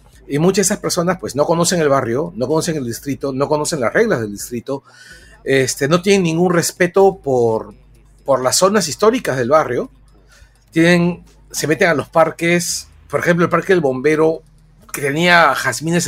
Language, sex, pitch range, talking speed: English, male, 140-190 Hz, 175 wpm